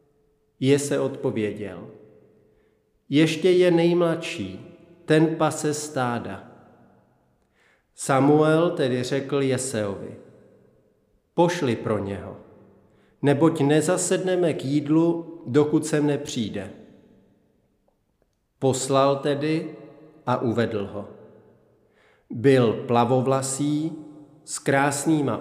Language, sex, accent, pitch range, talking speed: Czech, male, native, 120-150 Hz, 80 wpm